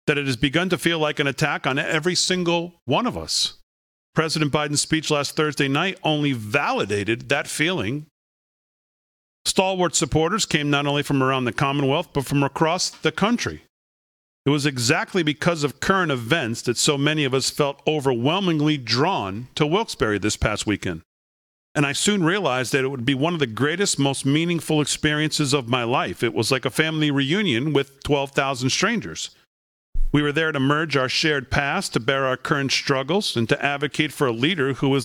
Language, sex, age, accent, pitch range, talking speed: English, male, 40-59, American, 130-160 Hz, 185 wpm